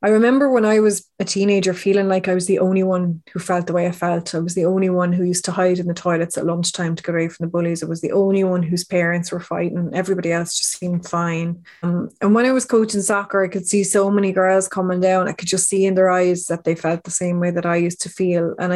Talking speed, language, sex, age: 280 wpm, English, female, 20-39